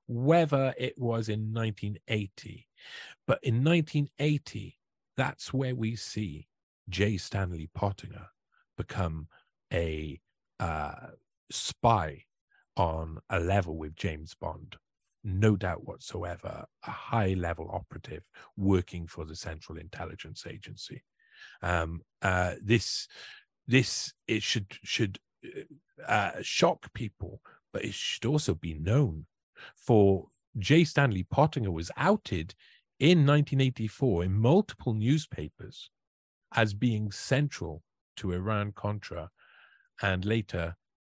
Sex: male